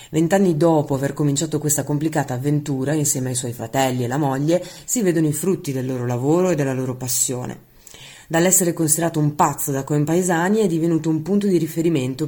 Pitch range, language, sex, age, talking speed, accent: 130-170 Hz, Italian, female, 30-49, 180 wpm, native